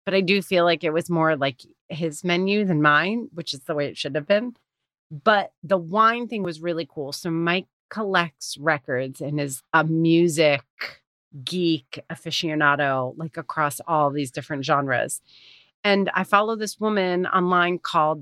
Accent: American